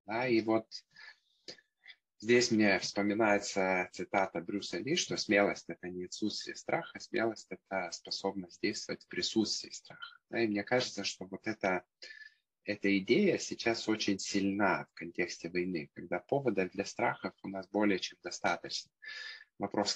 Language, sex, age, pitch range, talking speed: Ukrainian, male, 20-39, 95-110 Hz, 145 wpm